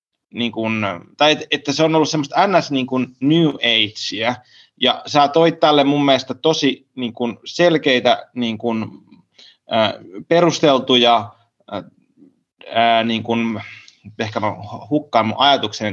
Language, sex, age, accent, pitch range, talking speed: Finnish, male, 30-49, native, 110-140 Hz, 125 wpm